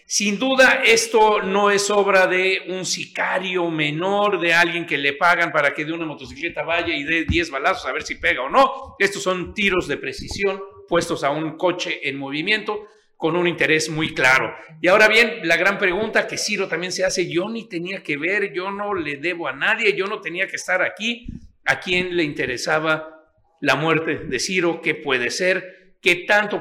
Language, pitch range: Spanish, 160-205 Hz